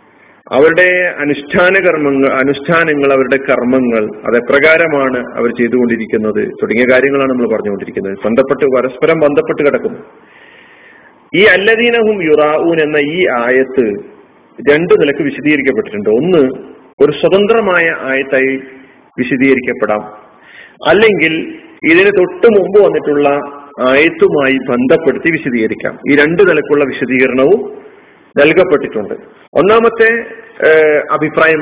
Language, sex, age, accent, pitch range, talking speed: Malayalam, male, 40-59, native, 130-205 Hz, 85 wpm